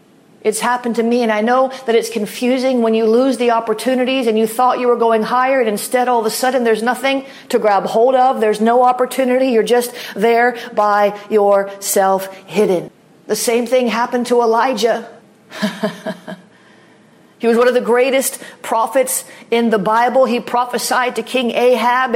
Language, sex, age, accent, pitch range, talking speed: English, female, 40-59, American, 220-265 Hz, 175 wpm